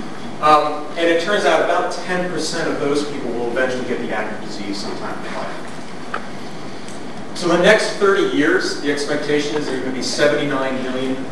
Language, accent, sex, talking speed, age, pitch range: English, American, male, 185 wpm, 40-59, 135-165 Hz